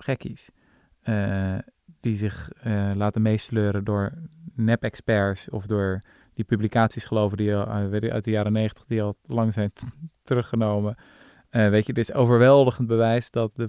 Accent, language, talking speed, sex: Dutch, Dutch, 155 wpm, male